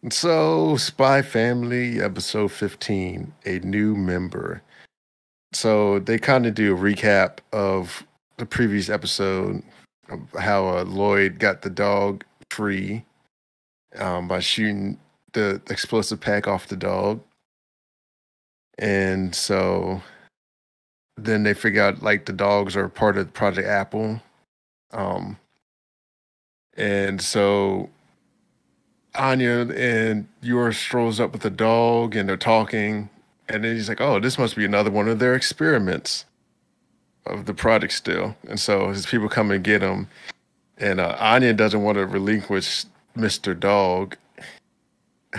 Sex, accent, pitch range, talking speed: male, American, 100-115 Hz, 130 wpm